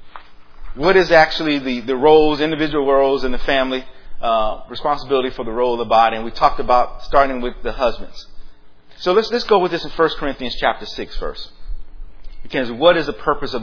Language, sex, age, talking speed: English, male, 30-49, 200 wpm